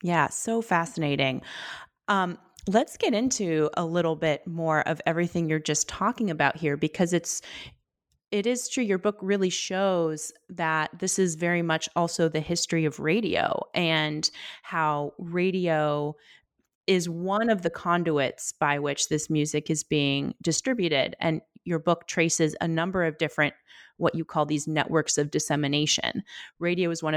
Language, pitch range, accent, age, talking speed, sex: English, 155-180 Hz, American, 30-49, 155 wpm, female